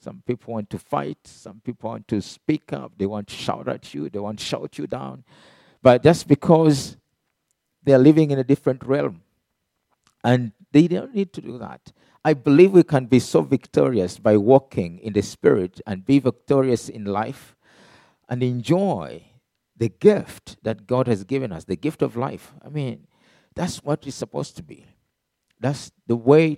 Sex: male